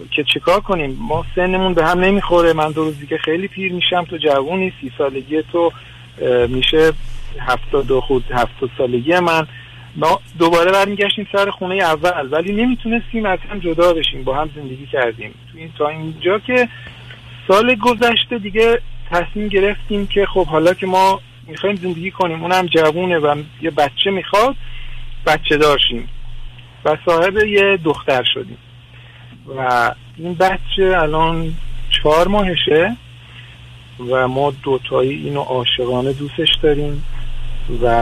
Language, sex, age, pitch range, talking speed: Persian, male, 50-69, 125-180 Hz, 135 wpm